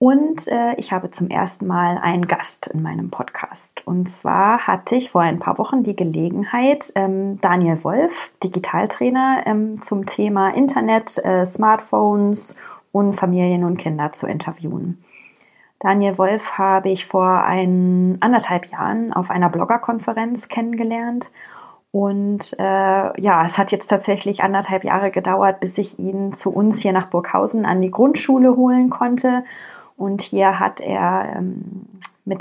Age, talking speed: 20-39, 145 wpm